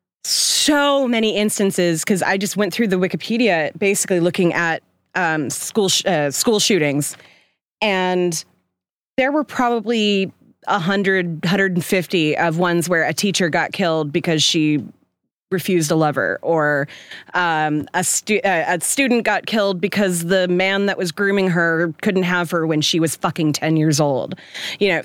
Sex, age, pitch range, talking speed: female, 30-49, 165-205 Hz, 160 wpm